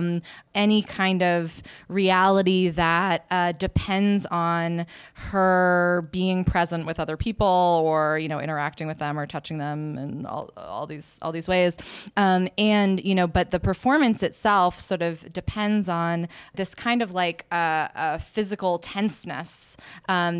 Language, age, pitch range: English, 20-39, 155-185 Hz